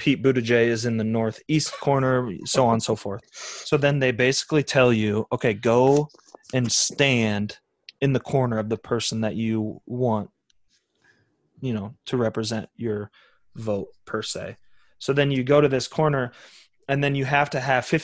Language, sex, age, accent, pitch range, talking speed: English, male, 20-39, American, 115-140 Hz, 175 wpm